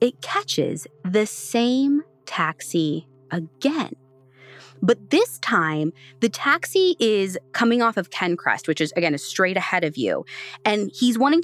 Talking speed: 135 wpm